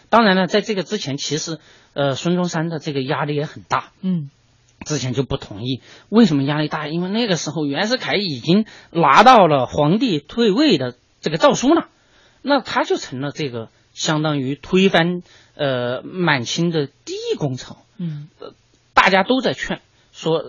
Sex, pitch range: male, 135-200 Hz